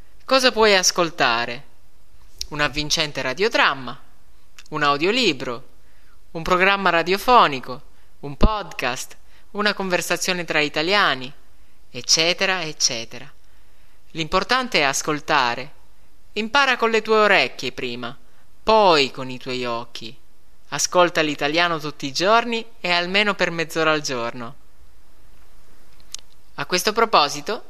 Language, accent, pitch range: Italian, native, 125-185 Hz